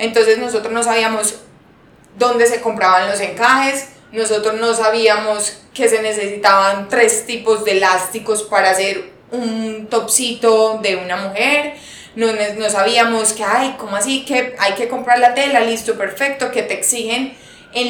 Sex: female